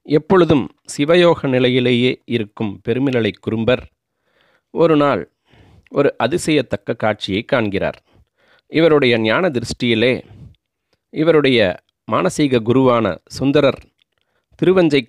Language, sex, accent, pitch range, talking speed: Tamil, male, native, 110-135 Hz, 80 wpm